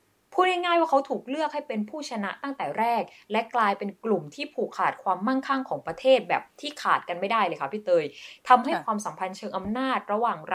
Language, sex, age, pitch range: Thai, female, 20-39, 180-255 Hz